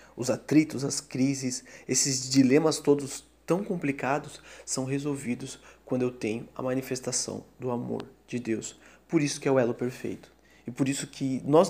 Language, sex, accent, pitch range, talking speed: Portuguese, male, Brazilian, 125-155 Hz, 165 wpm